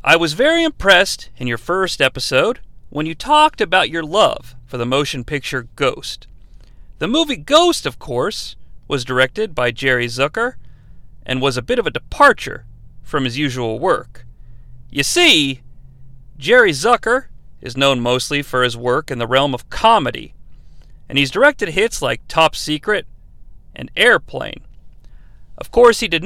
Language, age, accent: English, 40-59, American